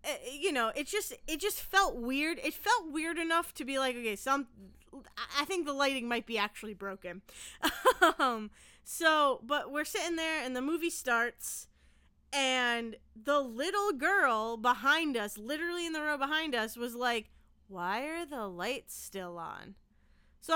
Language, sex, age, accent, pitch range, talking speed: English, female, 20-39, American, 225-315 Hz, 165 wpm